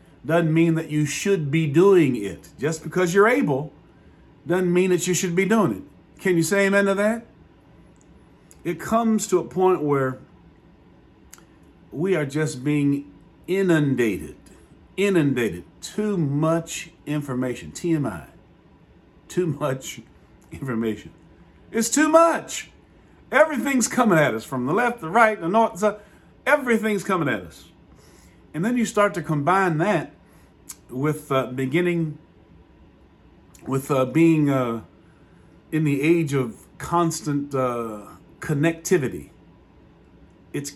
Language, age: English, 50-69